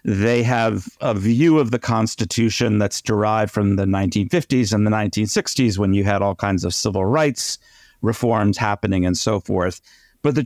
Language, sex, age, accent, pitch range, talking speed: English, male, 50-69, American, 100-125 Hz, 170 wpm